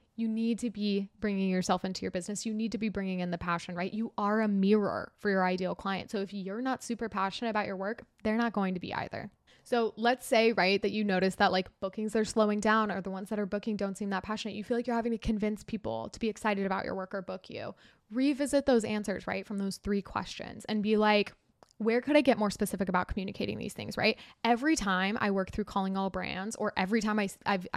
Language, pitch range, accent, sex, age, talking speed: English, 195-230 Hz, American, female, 10-29, 250 wpm